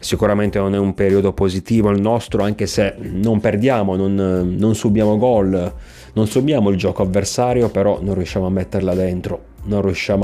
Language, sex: Italian, male